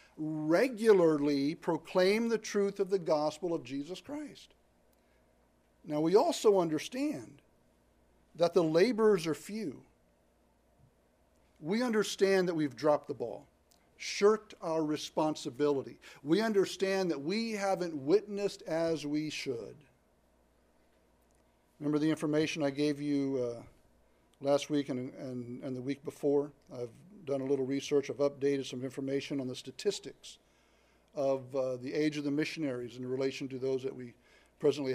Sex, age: male, 60-79